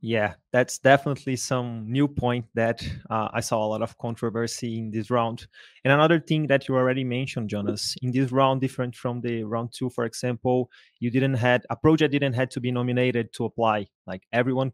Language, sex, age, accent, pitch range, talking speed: Portuguese, male, 20-39, Brazilian, 115-135 Hz, 200 wpm